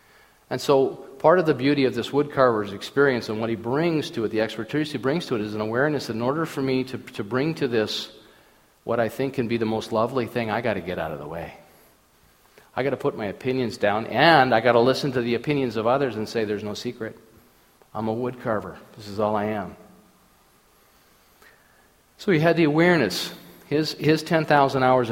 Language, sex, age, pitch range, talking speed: English, male, 40-59, 110-140 Hz, 215 wpm